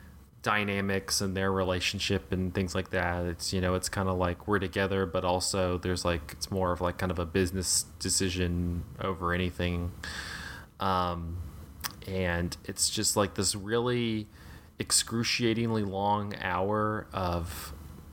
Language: English